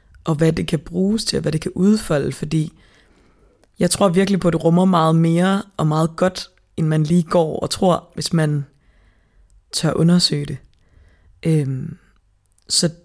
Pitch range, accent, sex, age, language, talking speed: 145-175 Hz, native, female, 20-39, Danish, 170 wpm